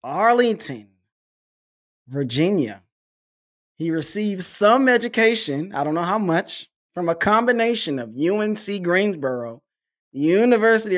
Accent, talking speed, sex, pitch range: American, 100 wpm, male, 140-200 Hz